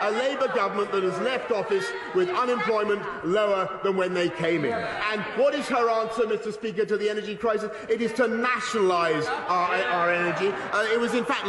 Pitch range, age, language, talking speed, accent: 180-230 Hz, 40-59, English, 200 wpm, British